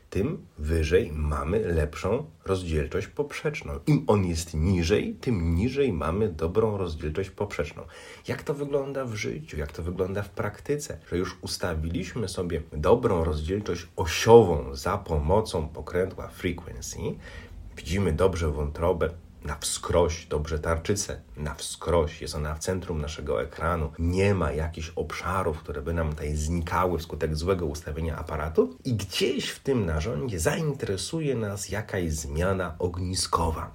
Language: Polish